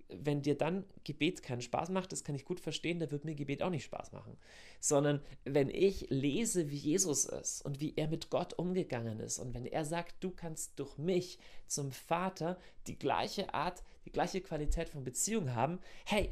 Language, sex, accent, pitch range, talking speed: German, male, German, 130-170 Hz, 200 wpm